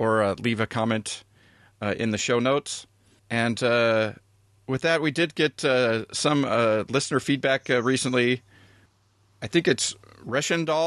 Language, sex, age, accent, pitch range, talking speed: English, male, 40-59, American, 105-140 Hz, 155 wpm